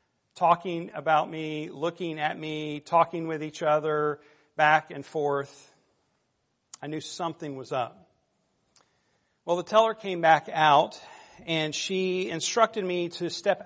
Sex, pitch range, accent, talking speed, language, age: male, 145-170 Hz, American, 130 wpm, English, 40-59